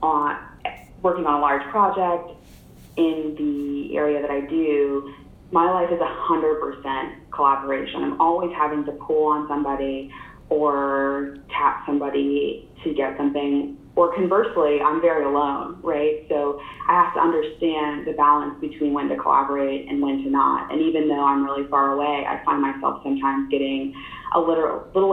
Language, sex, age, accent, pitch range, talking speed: English, female, 20-39, American, 140-165 Hz, 160 wpm